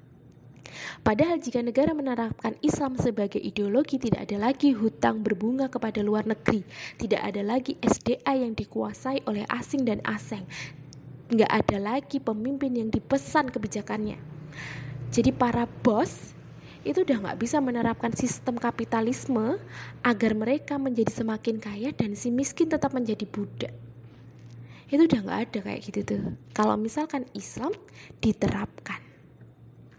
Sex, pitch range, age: female, 215-265 Hz, 20-39